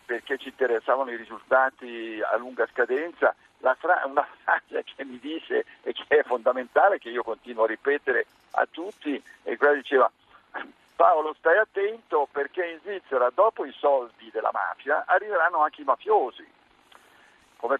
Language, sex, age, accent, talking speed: Italian, male, 50-69, native, 150 wpm